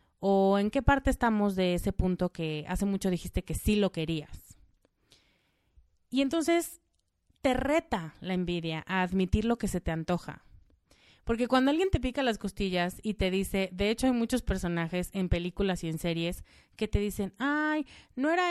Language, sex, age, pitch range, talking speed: Spanish, female, 30-49, 170-255 Hz, 180 wpm